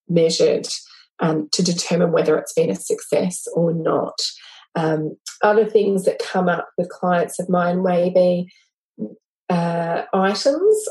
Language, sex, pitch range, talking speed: English, female, 175-225 Hz, 145 wpm